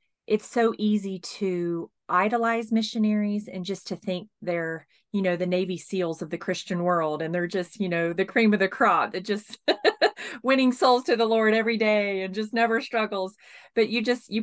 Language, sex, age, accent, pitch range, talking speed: English, female, 30-49, American, 180-215 Hz, 195 wpm